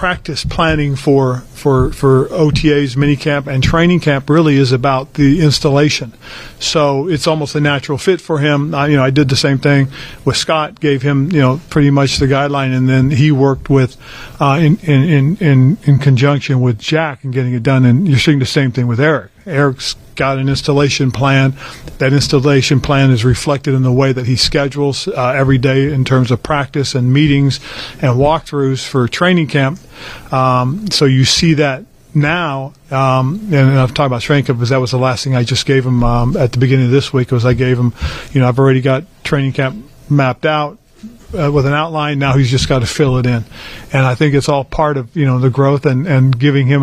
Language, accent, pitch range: English, American, 130-145 Hz